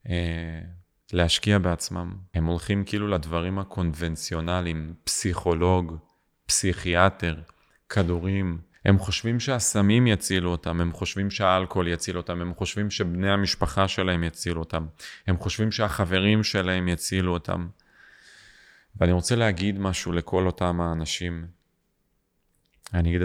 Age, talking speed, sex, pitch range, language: 30-49, 110 wpm, male, 85-100 Hz, Hebrew